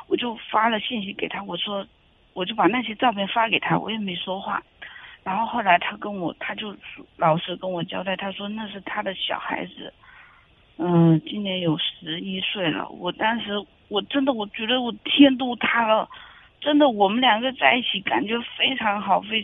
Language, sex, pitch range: Chinese, female, 190-240 Hz